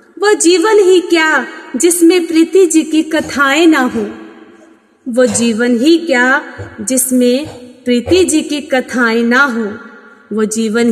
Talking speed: 130 wpm